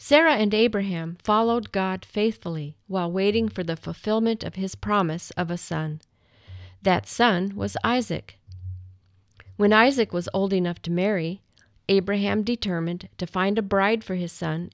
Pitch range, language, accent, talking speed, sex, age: 160-215 Hz, English, American, 150 wpm, female, 50-69